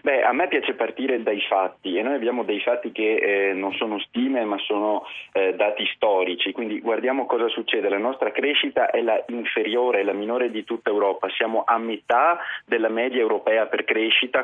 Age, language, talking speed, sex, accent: 30-49, Italian, 190 wpm, male, native